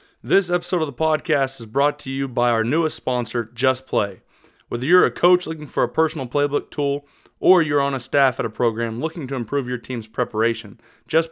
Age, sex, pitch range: 20-39, male, 120-160 Hz